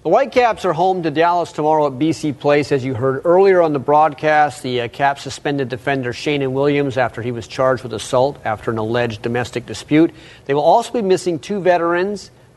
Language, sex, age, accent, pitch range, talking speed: English, male, 40-59, American, 135-180 Hz, 200 wpm